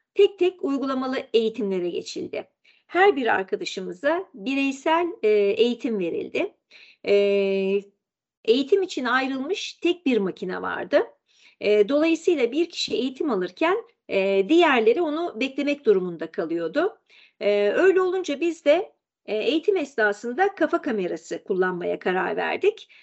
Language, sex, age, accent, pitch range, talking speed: Turkish, female, 50-69, native, 225-370 Hz, 100 wpm